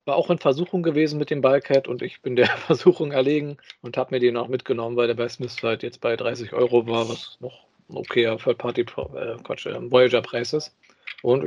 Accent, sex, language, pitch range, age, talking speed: German, male, German, 125-155 Hz, 50-69, 215 wpm